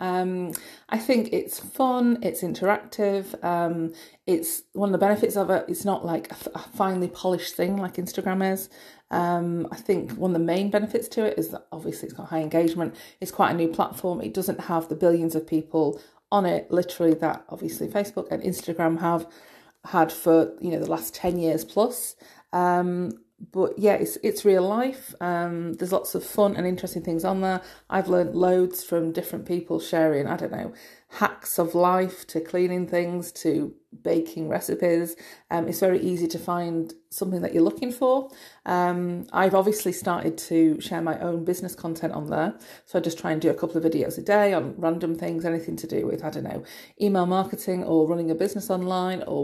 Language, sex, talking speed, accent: English, female, 195 wpm, British